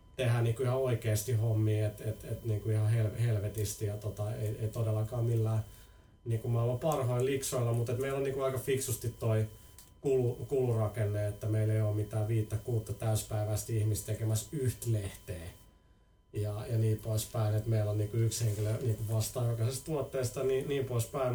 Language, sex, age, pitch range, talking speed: Finnish, male, 30-49, 110-130 Hz, 170 wpm